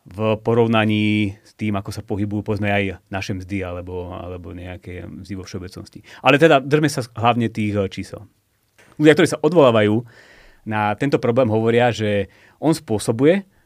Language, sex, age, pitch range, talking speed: Slovak, male, 30-49, 105-125 Hz, 150 wpm